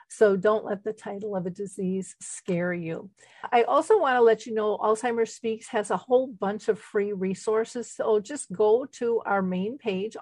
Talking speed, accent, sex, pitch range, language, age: 195 wpm, American, female, 190-215 Hz, English, 50-69